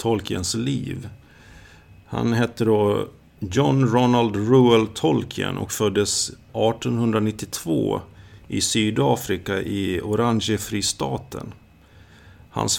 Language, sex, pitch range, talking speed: Swedish, male, 95-115 Hz, 85 wpm